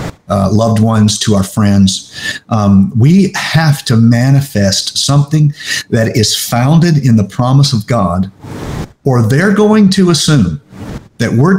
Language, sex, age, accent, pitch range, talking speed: English, male, 50-69, American, 105-150 Hz, 140 wpm